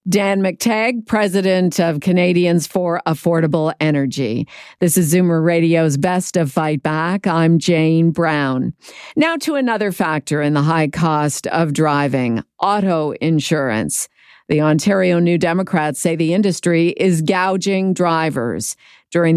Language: English